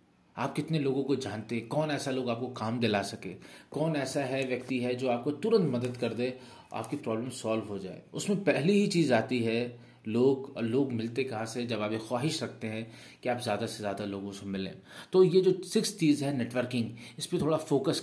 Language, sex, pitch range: Hindi, male, 115-150 Hz